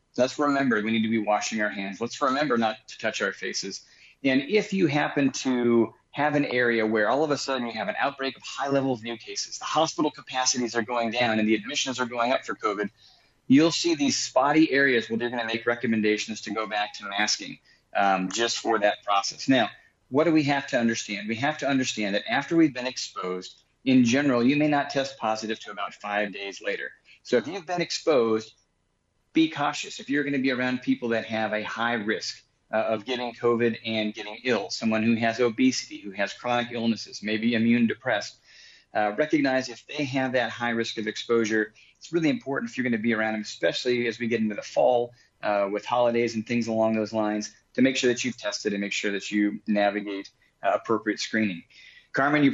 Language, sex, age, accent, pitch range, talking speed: English, male, 30-49, American, 110-135 Hz, 215 wpm